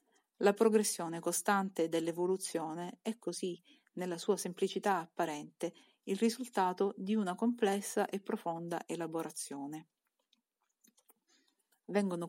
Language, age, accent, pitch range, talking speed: Italian, 40-59, native, 165-215 Hz, 95 wpm